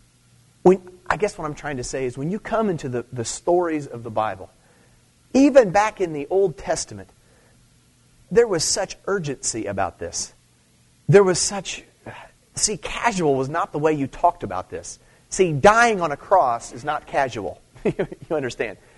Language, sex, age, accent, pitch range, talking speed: English, male, 30-49, American, 135-195 Hz, 170 wpm